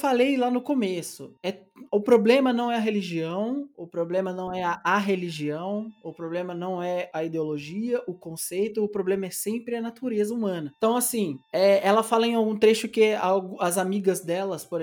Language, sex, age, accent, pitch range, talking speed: Portuguese, male, 20-39, Brazilian, 180-225 Hz, 185 wpm